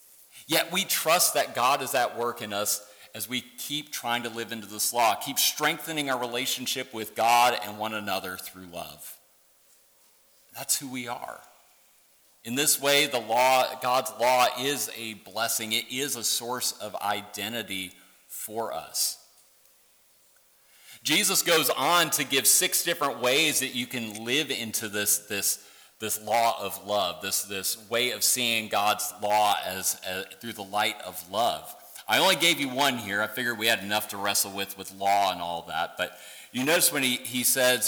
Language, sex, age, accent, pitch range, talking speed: English, male, 40-59, American, 110-145 Hz, 175 wpm